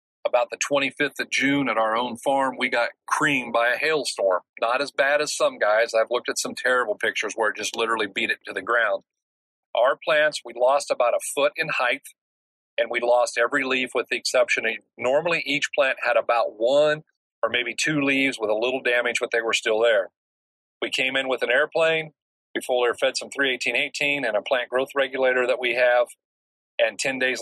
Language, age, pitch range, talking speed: English, 40-59, 120-145 Hz, 205 wpm